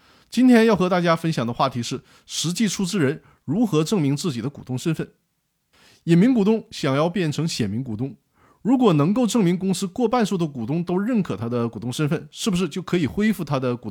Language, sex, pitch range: Chinese, male, 135-195 Hz